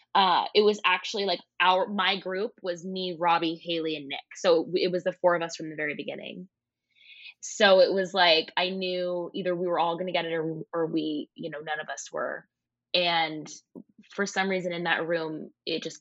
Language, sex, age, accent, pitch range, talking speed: English, female, 20-39, American, 160-200 Hz, 215 wpm